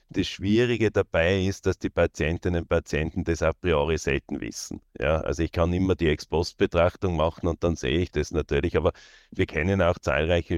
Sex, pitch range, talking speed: male, 85-95 Hz, 195 wpm